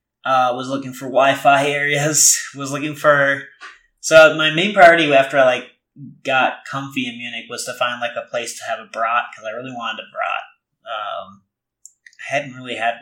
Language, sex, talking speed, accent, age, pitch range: English, male, 190 wpm, American, 30-49, 125-155 Hz